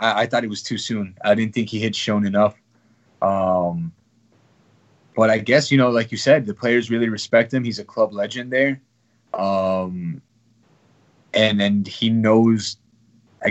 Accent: American